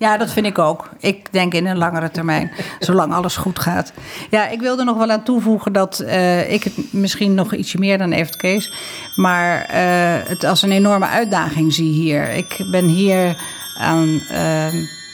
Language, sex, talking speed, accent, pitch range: Dutch, female, 190 wpm, Dutch, 165-195 Hz